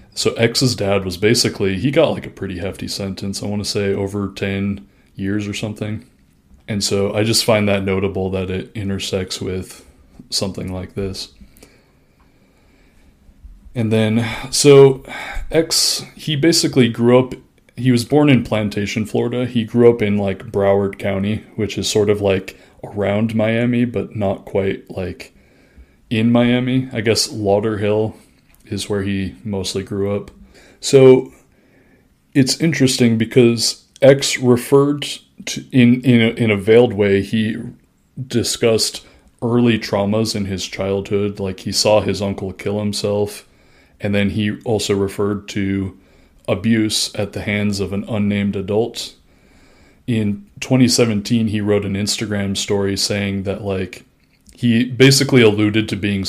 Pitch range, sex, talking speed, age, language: 100-115 Hz, male, 145 wpm, 20-39, English